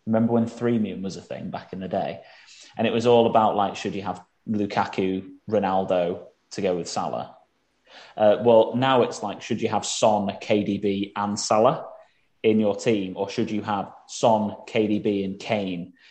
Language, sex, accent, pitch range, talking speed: English, male, British, 100-125 Hz, 180 wpm